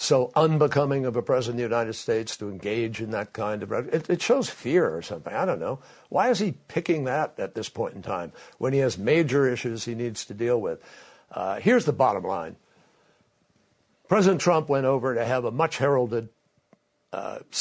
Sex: male